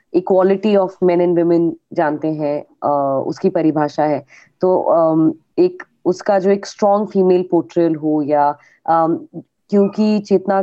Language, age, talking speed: Hindi, 20-39, 120 wpm